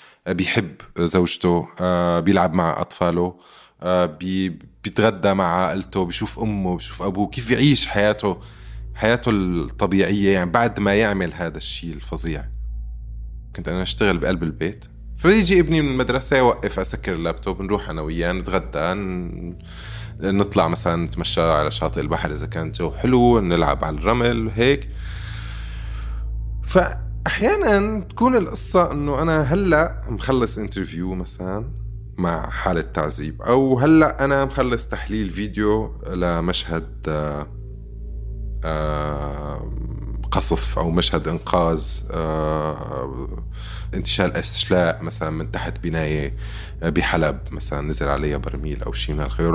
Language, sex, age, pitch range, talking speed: Arabic, male, 20-39, 80-110 Hz, 115 wpm